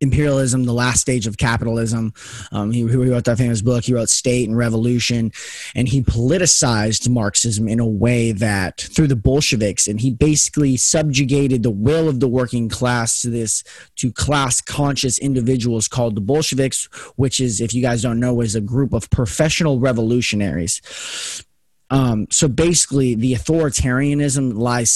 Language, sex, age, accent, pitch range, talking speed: English, male, 20-39, American, 115-135 Hz, 160 wpm